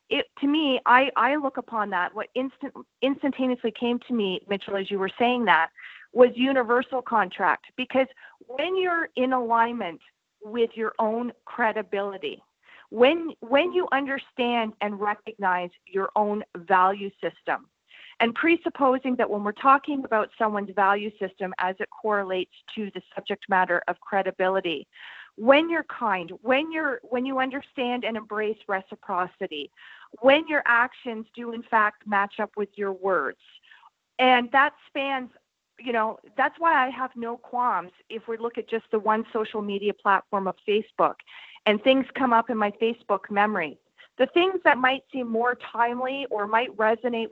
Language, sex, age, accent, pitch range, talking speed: English, female, 40-59, American, 205-255 Hz, 155 wpm